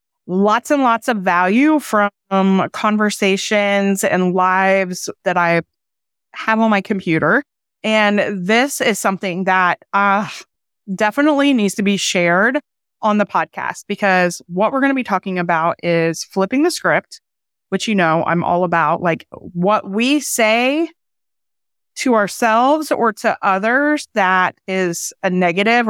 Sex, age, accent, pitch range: female, 20-39, American, 180-220 Hz